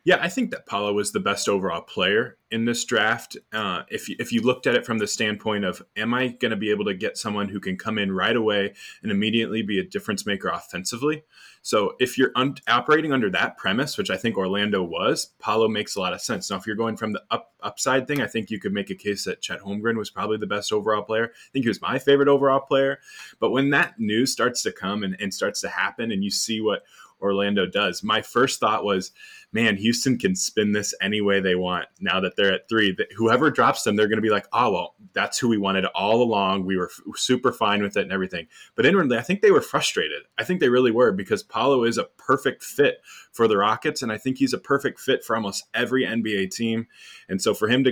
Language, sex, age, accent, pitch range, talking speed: English, male, 20-39, American, 105-135 Hz, 245 wpm